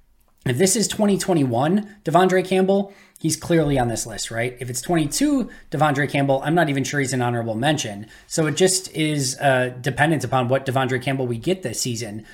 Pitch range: 125-145 Hz